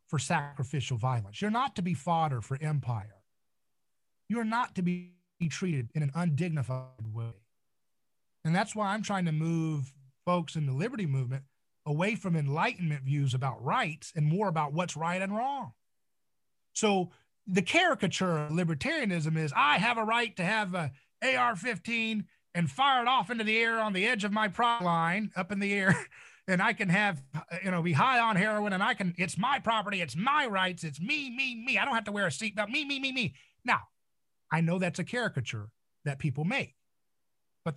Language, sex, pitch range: English, male, 150-205 Hz